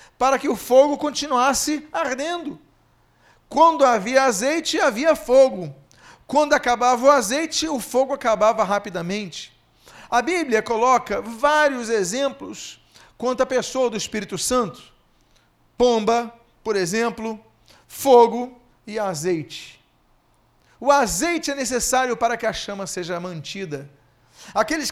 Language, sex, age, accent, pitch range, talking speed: Portuguese, male, 40-59, Brazilian, 220-280 Hz, 115 wpm